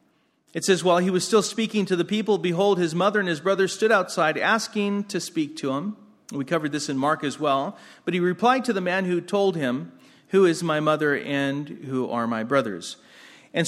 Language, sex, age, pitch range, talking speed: English, male, 40-59, 130-190 Hz, 215 wpm